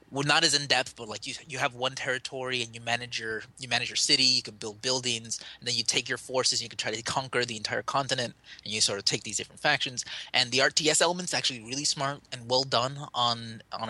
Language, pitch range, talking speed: English, 115-135 Hz, 255 wpm